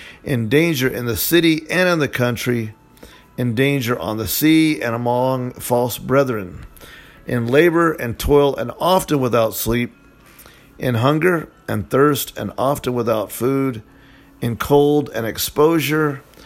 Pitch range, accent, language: 115-145 Hz, American, English